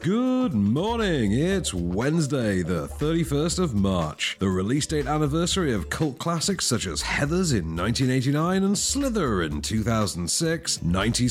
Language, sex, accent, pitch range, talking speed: English, male, British, 95-150 Hz, 125 wpm